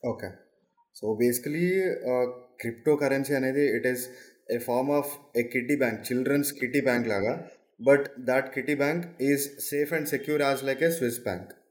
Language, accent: Telugu, native